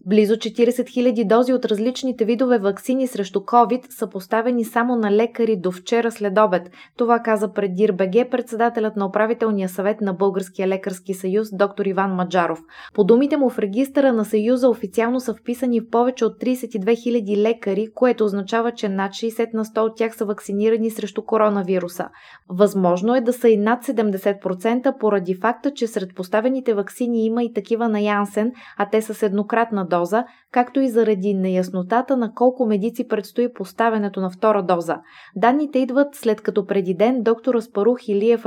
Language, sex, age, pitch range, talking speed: Bulgarian, female, 20-39, 195-235 Hz, 170 wpm